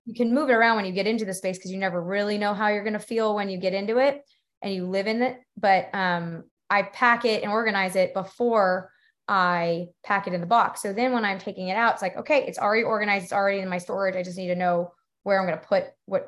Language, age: English, 20-39